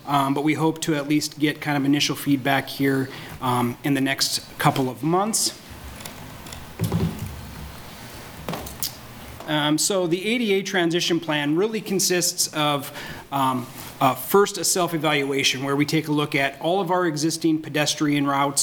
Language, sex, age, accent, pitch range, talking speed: English, male, 30-49, American, 140-160 Hz, 145 wpm